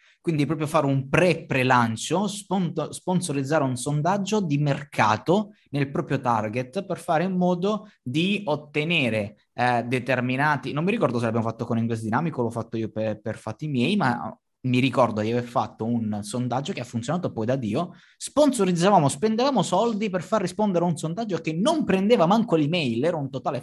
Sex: male